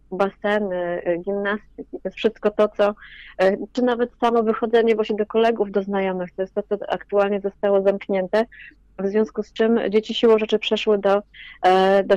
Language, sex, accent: Polish, female, native